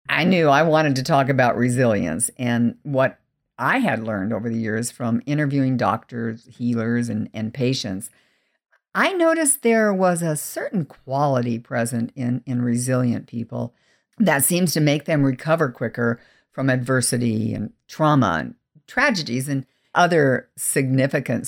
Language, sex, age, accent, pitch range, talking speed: English, female, 50-69, American, 125-175 Hz, 140 wpm